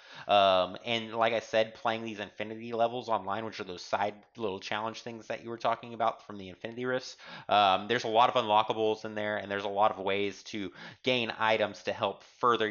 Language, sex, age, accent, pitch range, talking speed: English, male, 30-49, American, 100-120 Hz, 215 wpm